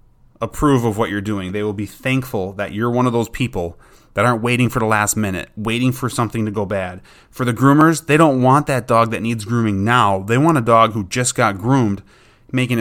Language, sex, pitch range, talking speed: English, male, 105-130 Hz, 230 wpm